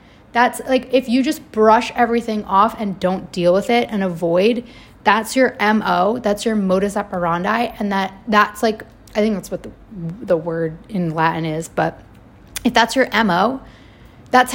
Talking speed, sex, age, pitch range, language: 175 wpm, female, 30-49, 195-235 Hz, English